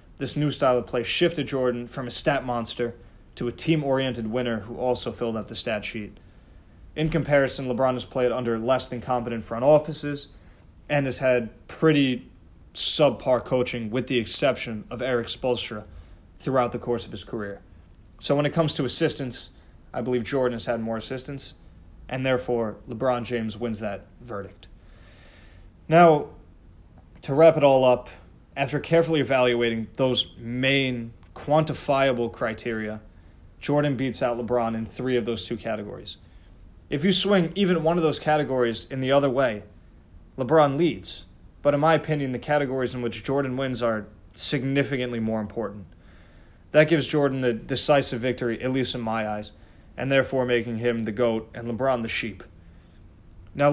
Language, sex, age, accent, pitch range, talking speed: English, male, 20-39, American, 105-135 Hz, 160 wpm